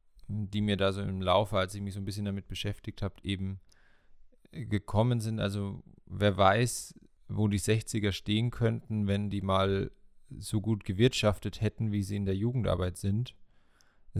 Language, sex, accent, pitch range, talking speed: German, male, German, 95-110 Hz, 170 wpm